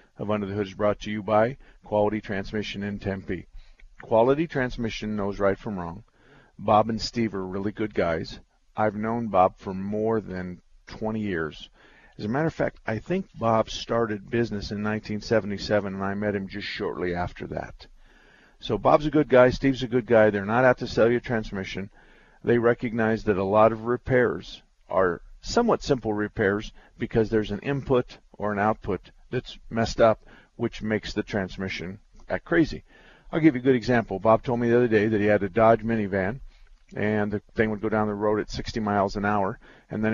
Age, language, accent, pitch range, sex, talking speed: 50-69, English, American, 105-120 Hz, male, 195 wpm